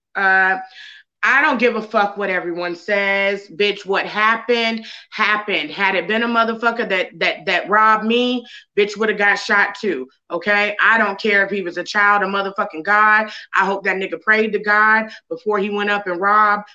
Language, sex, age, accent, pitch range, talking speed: English, female, 30-49, American, 200-240 Hz, 195 wpm